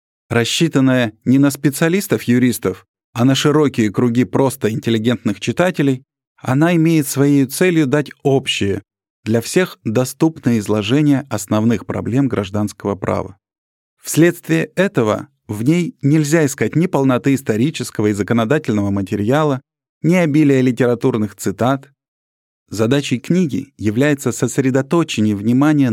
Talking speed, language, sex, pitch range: 105 wpm, Russian, male, 110-150 Hz